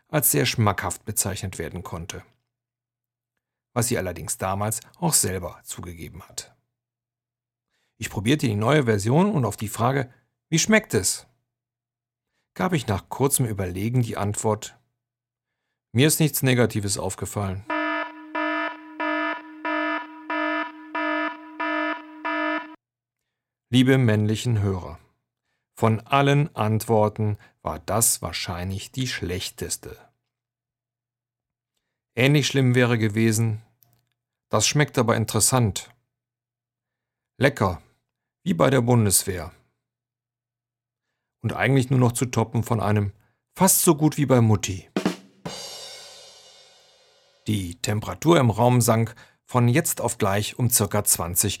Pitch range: 110-135 Hz